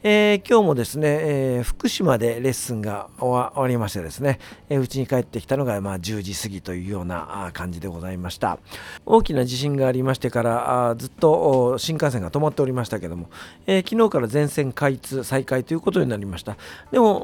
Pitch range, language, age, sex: 115-180 Hz, Japanese, 50-69, male